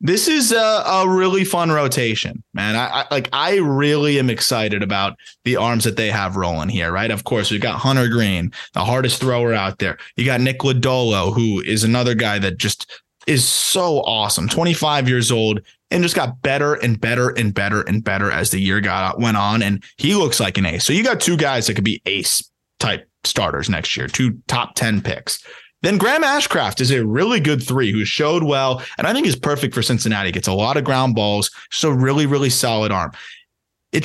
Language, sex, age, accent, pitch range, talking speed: English, male, 20-39, American, 110-130 Hz, 210 wpm